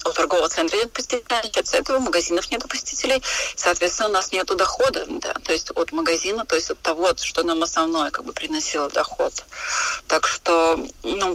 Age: 30-49